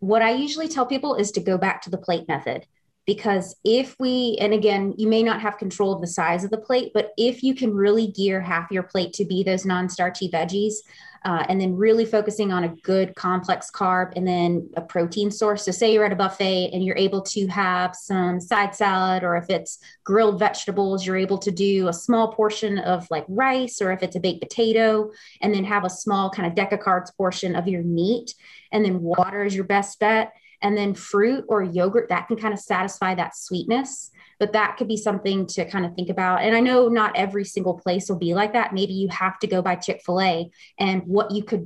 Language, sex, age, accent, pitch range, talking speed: English, female, 20-39, American, 185-210 Hz, 230 wpm